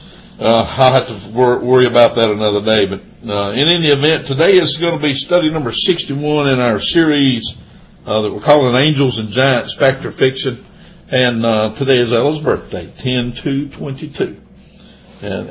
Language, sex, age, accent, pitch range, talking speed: English, male, 60-79, American, 110-155 Hz, 165 wpm